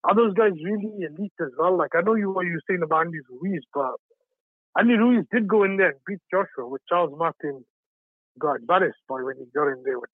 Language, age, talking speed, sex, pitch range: English, 60-79, 230 wpm, male, 160-230 Hz